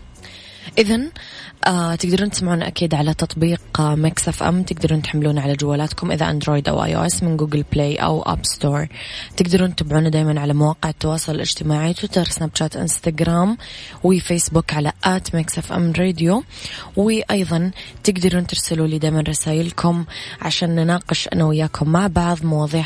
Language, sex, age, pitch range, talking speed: English, female, 20-39, 150-175 Hz, 135 wpm